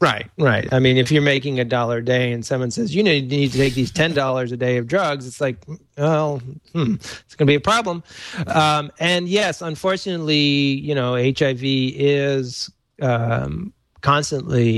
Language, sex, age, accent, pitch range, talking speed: English, male, 30-49, American, 120-140 Hz, 180 wpm